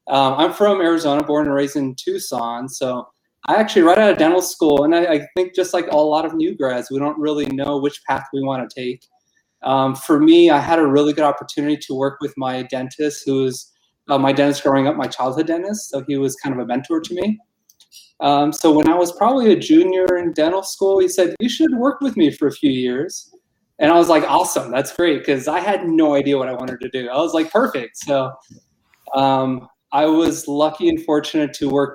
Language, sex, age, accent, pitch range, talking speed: English, male, 20-39, American, 135-185 Hz, 225 wpm